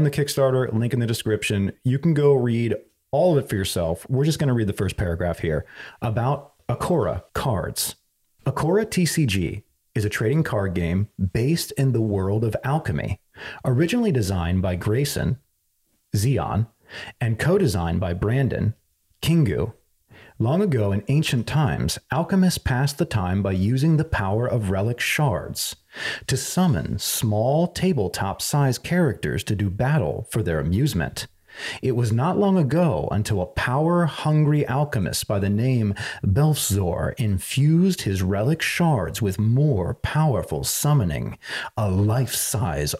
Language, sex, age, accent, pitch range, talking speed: English, male, 30-49, American, 100-145 Hz, 140 wpm